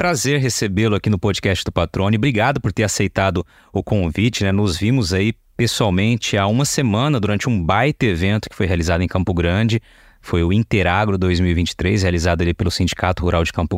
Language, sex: Portuguese, male